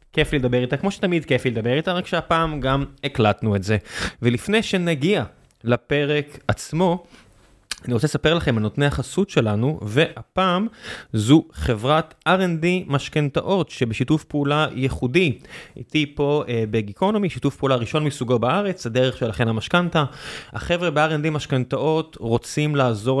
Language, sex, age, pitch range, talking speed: Hebrew, male, 20-39, 120-150 Hz, 130 wpm